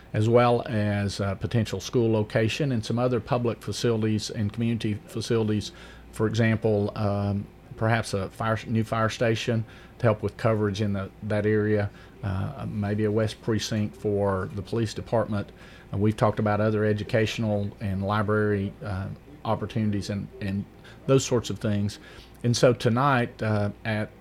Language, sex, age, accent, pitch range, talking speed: English, male, 40-59, American, 100-115 Hz, 150 wpm